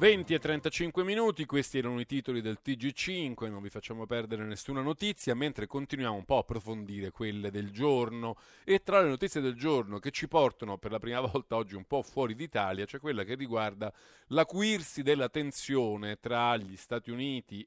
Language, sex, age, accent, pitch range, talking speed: Italian, male, 40-59, native, 115-155 Hz, 185 wpm